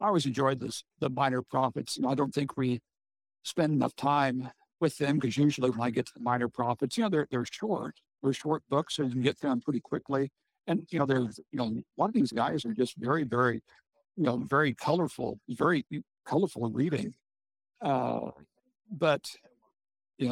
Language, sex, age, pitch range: English, male, 60-79, 125-145 Hz